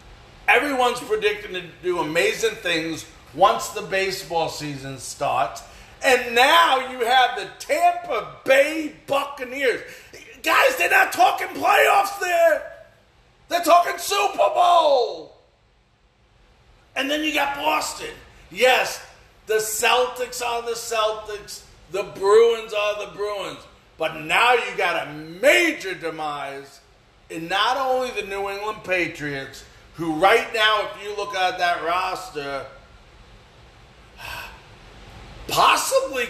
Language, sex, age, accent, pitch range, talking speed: English, male, 40-59, American, 180-290 Hz, 115 wpm